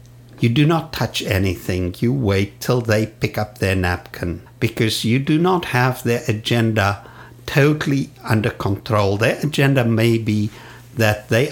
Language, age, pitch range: English, 60-79, 110-130 Hz